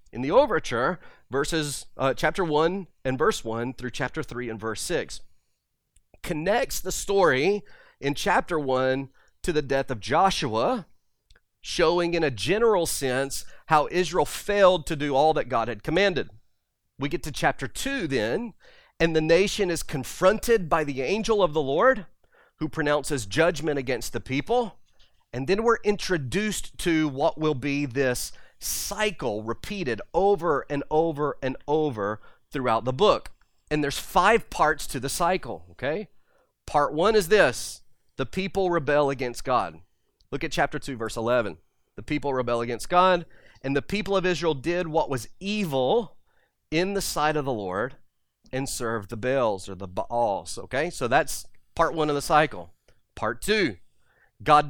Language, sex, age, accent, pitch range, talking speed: English, male, 40-59, American, 130-180 Hz, 160 wpm